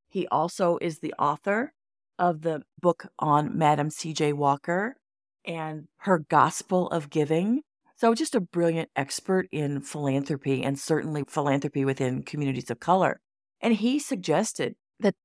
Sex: female